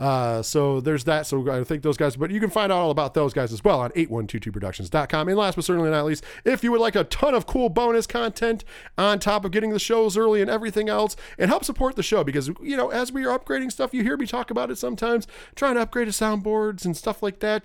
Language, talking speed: English, 265 wpm